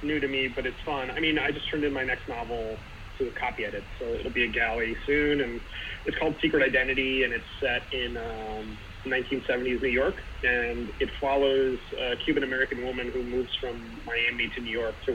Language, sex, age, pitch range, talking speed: English, male, 30-49, 115-135 Hz, 210 wpm